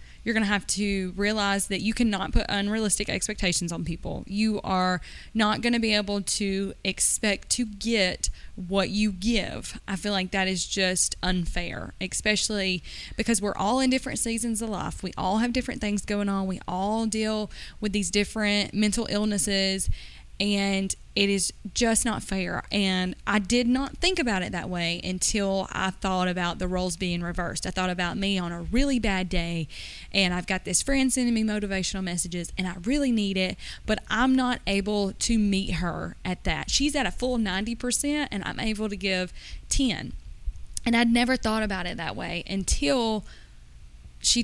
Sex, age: female, 20-39